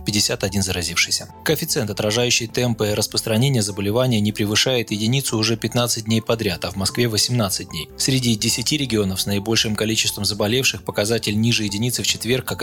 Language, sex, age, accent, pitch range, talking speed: Russian, male, 20-39, native, 105-125 Hz, 150 wpm